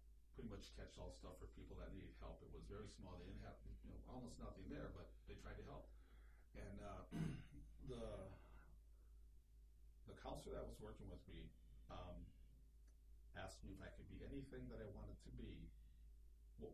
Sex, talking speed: male, 185 wpm